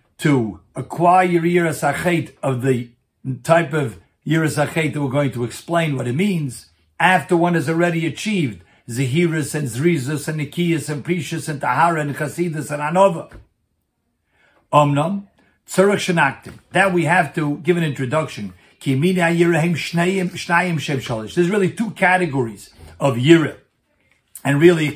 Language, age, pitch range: English, 60-79, 140-180 Hz